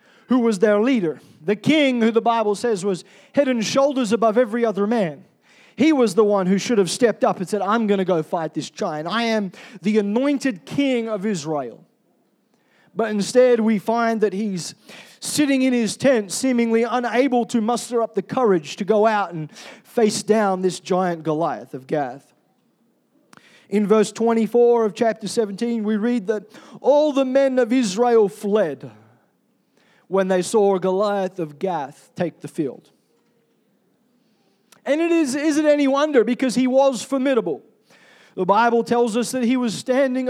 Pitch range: 200-250 Hz